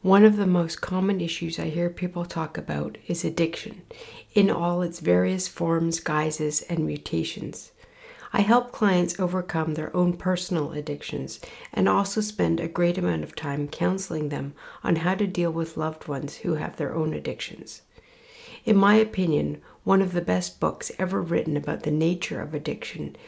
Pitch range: 155-195 Hz